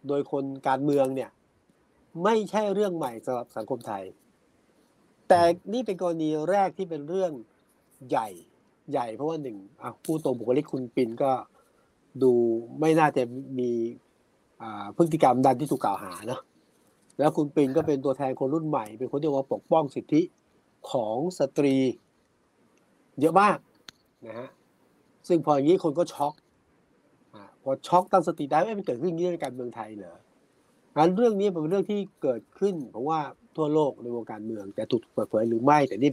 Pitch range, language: 130-180 Hz, Thai